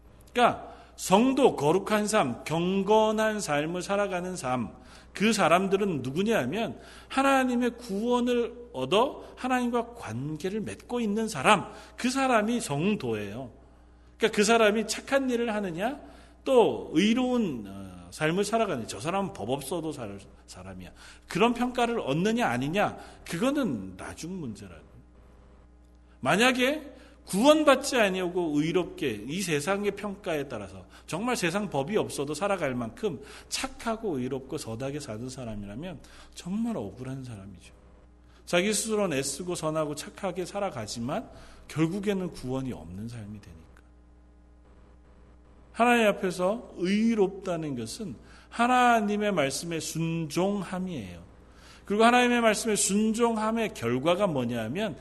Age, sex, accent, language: 40-59, male, native, Korean